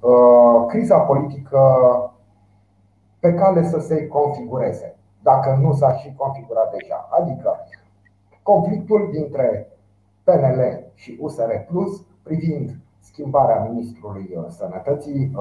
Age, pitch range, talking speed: 30-49, 115-150 Hz, 95 wpm